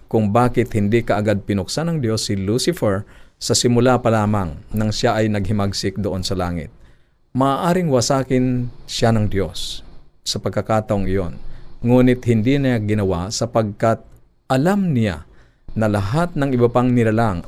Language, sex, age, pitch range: Filipino, male, 50-69, 100-125 Hz